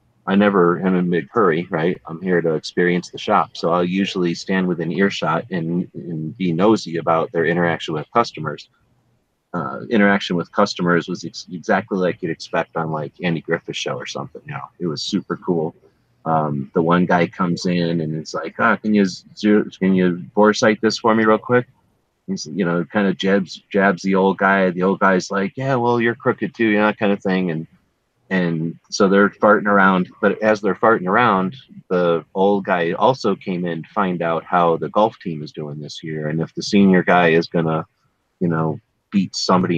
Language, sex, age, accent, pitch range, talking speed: English, male, 30-49, American, 85-100 Hz, 210 wpm